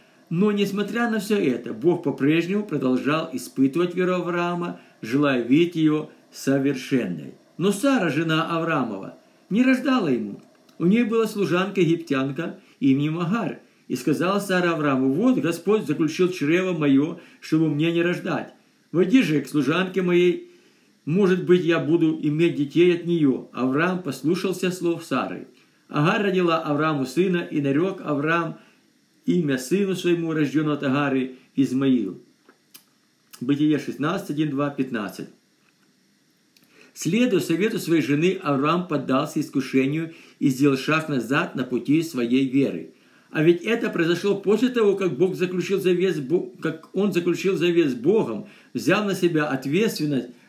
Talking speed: 135 wpm